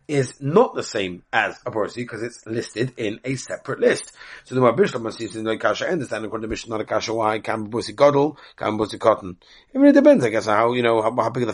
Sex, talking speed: male, 145 wpm